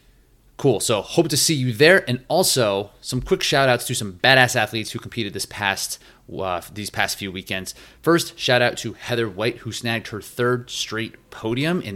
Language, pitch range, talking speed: English, 95-125 Hz, 185 wpm